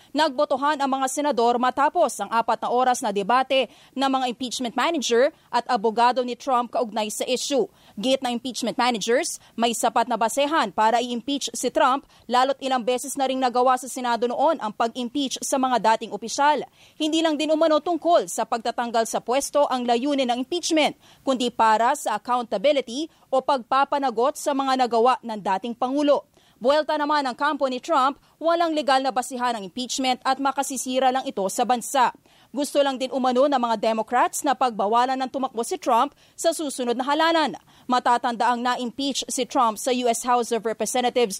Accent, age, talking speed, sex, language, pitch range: Filipino, 20-39, 175 wpm, female, English, 240-280 Hz